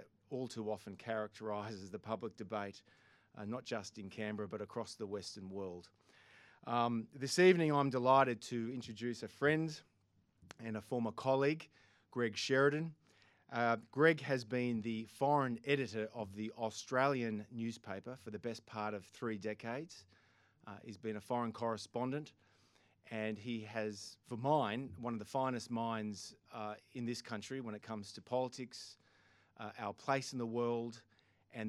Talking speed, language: 155 wpm, English